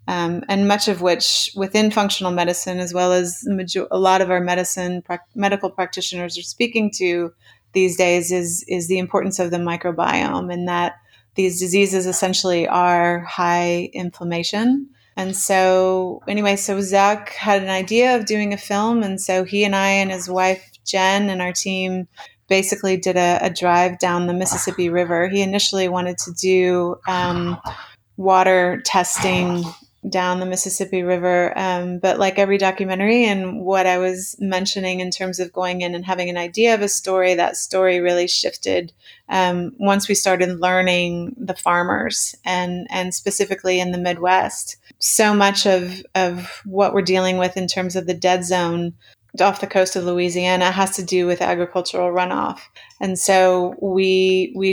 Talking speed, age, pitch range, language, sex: 165 wpm, 30-49, 180-195 Hz, English, female